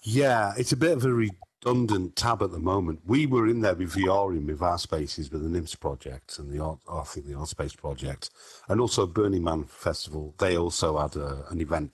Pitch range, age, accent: 80-105 Hz, 50-69, British